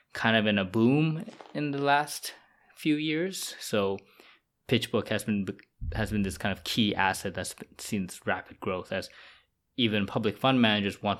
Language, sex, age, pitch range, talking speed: English, male, 20-39, 95-115 Hz, 165 wpm